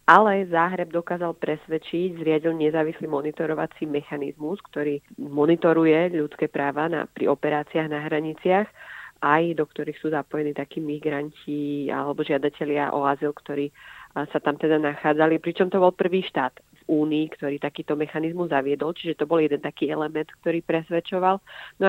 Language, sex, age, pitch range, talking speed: Slovak, female, 30-49, 155-170 Hz, 145 wpm